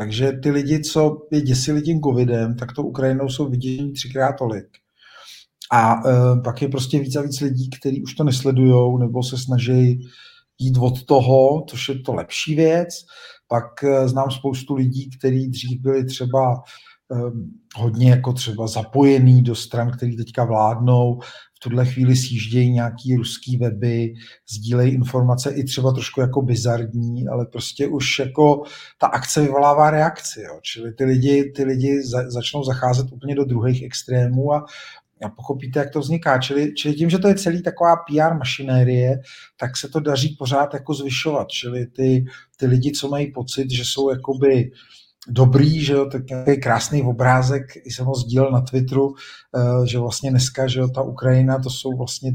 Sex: male